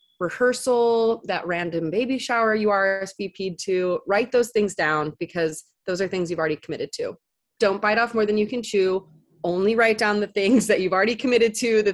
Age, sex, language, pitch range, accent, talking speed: 30-49, female, English, 180-235 Hz, American, 195 wpm